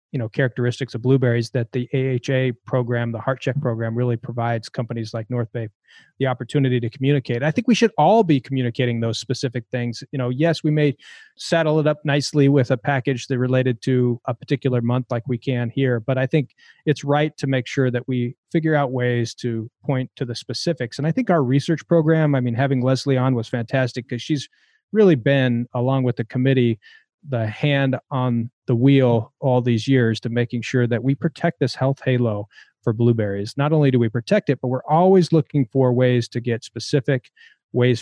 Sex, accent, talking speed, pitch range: male, American, 205 wpm, 120-140 Hz